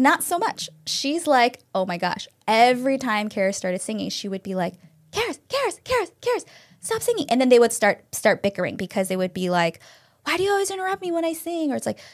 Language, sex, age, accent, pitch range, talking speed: English, female, 20-39, American, 190-265 Hz, 230 wpm